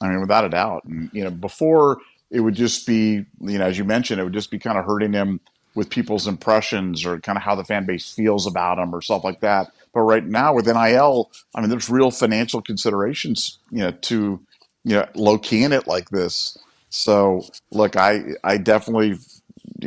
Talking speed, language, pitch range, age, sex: 210 wpm, English, 105-130 Hz, 40-59, male